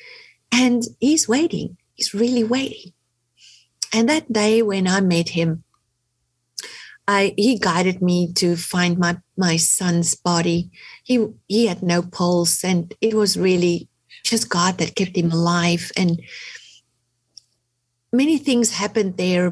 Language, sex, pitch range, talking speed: English, female, 170-230 Hz, 130 wpm